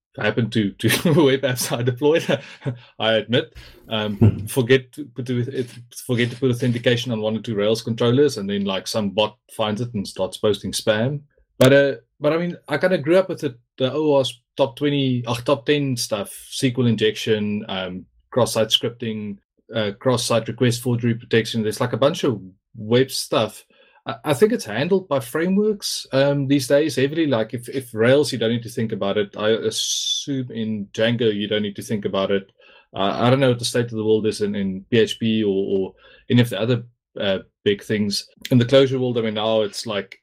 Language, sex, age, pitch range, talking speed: English, male, 20-39, 110-140 Hz, 205 wpm